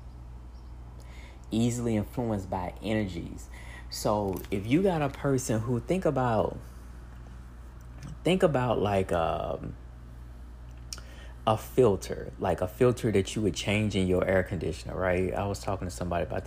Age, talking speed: 20-39, 135 wpm